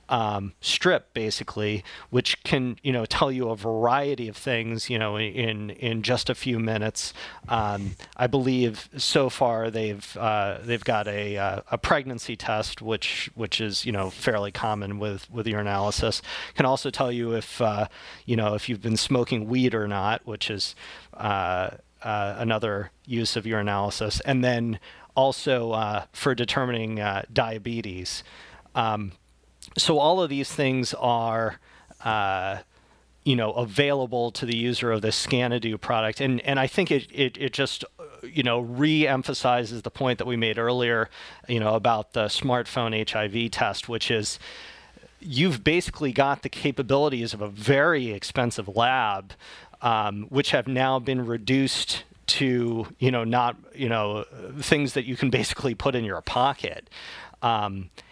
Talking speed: 155 wpm